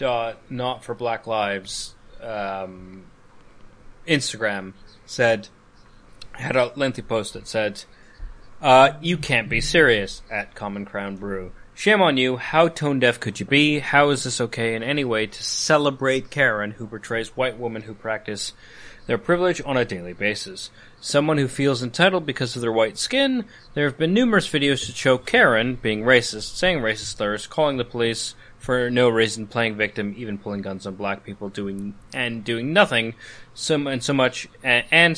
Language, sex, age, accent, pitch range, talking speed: English, male, 30-49, American, 105-135 Hz, 170 wpm